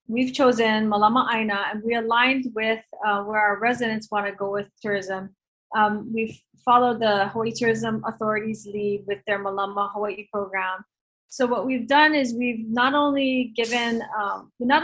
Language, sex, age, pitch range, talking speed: English, female, 30-49, 210-245 Hz, 170 wpm